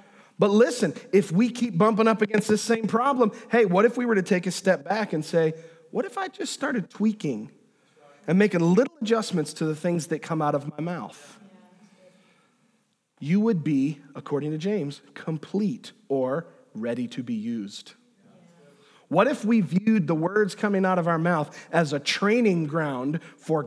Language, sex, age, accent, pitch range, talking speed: English, male, 40-59, American, 160-220 Hz, 175 wpm